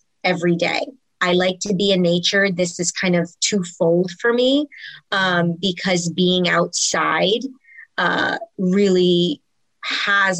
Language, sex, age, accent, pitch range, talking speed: English, female, 30-49, American, 180-245 Hz, 125 wpm